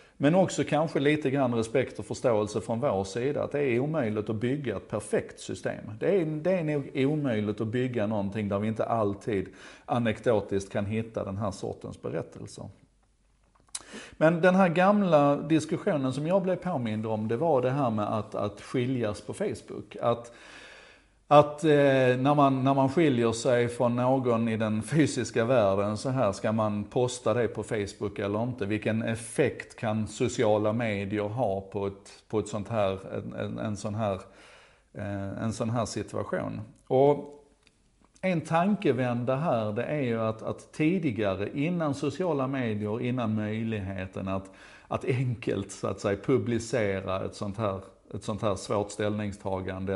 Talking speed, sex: 150 wpm, male